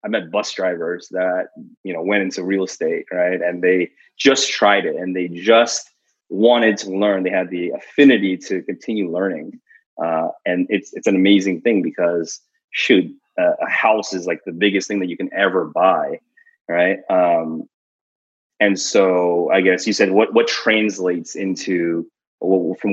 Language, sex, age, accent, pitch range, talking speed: English, male, 30-49, American, 90-135 Hz, 170 wpm